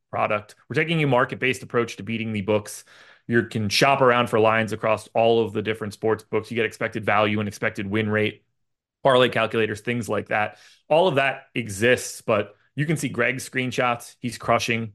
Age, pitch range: 30-49, 110-155 Hz